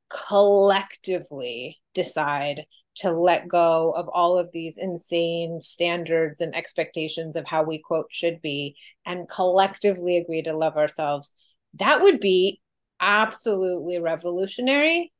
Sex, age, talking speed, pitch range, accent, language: female, 30-49, 120 wpm, 165-225 Hz, American, English